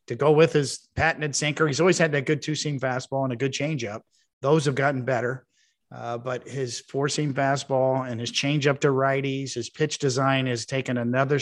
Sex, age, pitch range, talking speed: male, 50-69, 125-150 Hz, 195 wpm